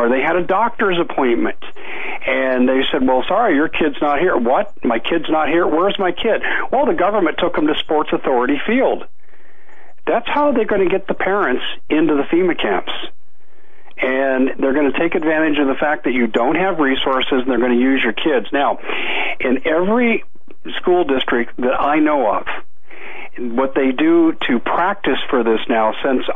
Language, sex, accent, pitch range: English, male, American, 125-165 Hz